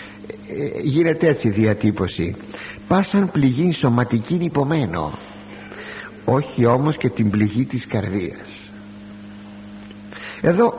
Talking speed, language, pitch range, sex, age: 90 wpm, Greek, 105-160 Hz, male, 60-79